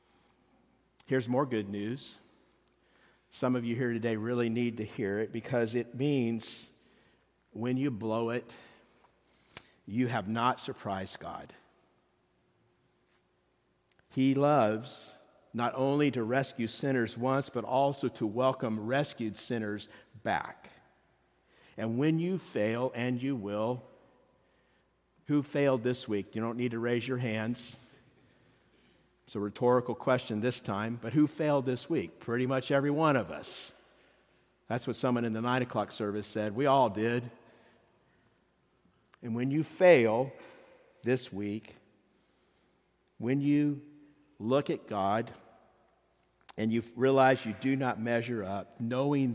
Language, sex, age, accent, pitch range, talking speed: English, male, 50-69, American, 110-135 Hz, 130 wpm